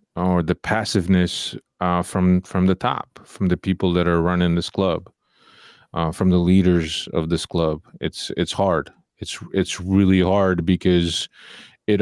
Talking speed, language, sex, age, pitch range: 160 wpm, English, male, 30-49, 90-100 Hz